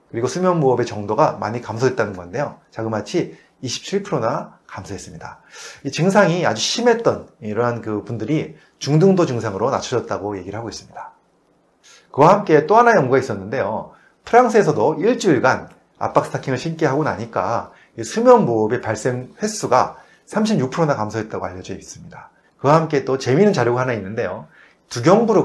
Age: 30-49